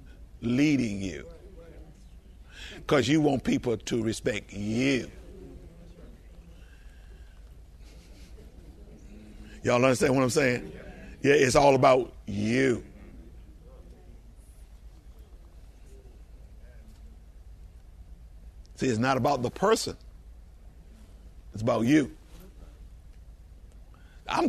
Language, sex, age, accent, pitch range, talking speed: English, male, 60-79, American, 75-120 Hz, 70 wpm